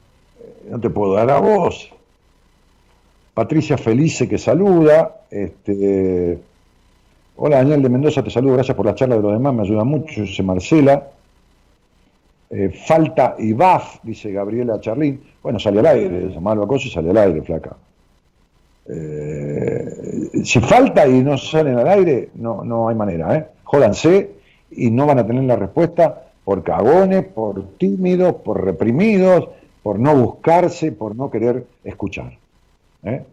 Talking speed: 150 wpm